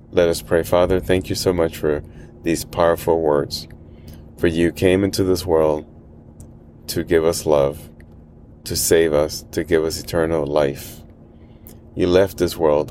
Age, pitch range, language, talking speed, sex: 30-49, 75-85 Hz, English, 160 wpm, male